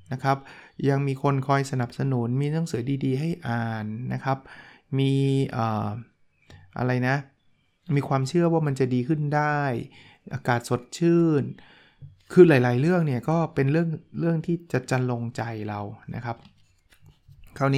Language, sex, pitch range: Thai, male, 115-140 Hz